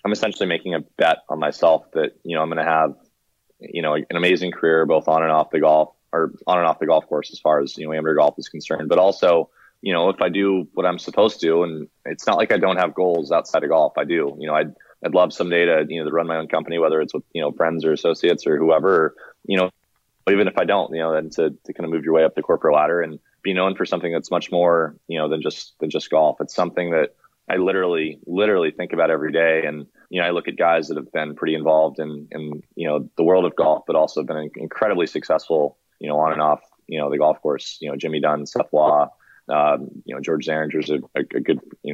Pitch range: 75-85 Hz